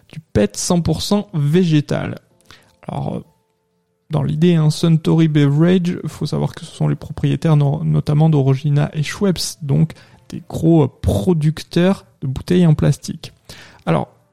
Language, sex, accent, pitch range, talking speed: French, male, French, 145-175 Hz, 130 wpm